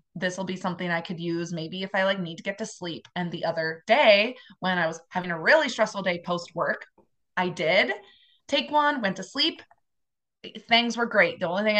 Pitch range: 190-250 Hz